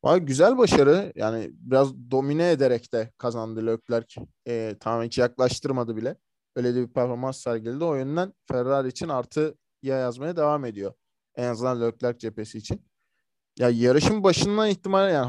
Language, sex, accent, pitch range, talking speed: Turkish, male, native, 120-150 Hz, 150 wpm